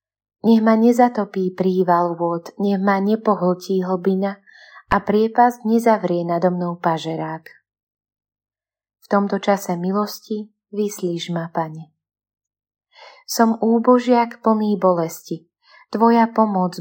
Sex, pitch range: female, 160-210 Hz